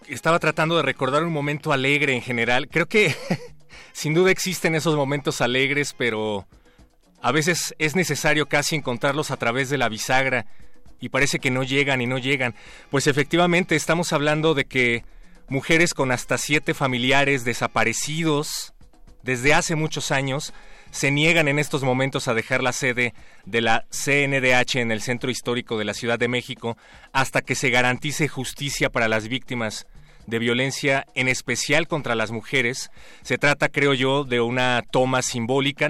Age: 30-49